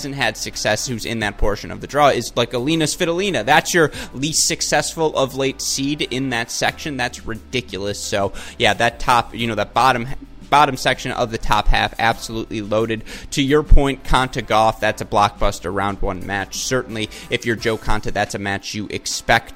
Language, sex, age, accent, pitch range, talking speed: English, male, 20-39, American, 105-130 Hz, 195 wpm